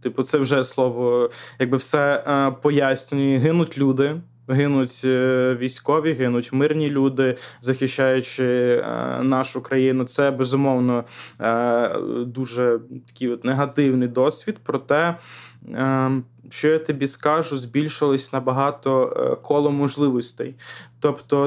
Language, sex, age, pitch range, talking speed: Ukrainian, male, 20-39, 130-145 Hz, 100 wpm